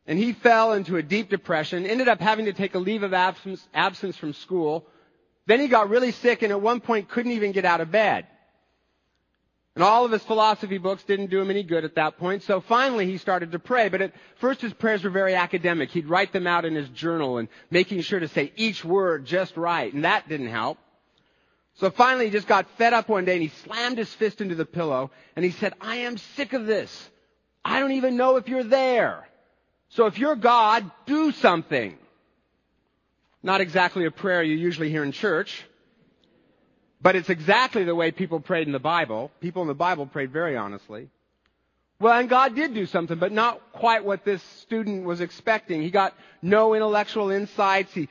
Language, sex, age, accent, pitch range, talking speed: English, male, 40-59, American, 175-225 Hz, 205 wpm